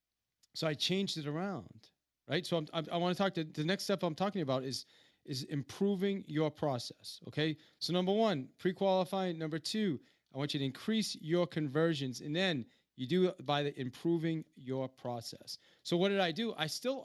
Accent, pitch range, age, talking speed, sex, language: American, 140-195 Hz, 40-59, 195 wpm, male, English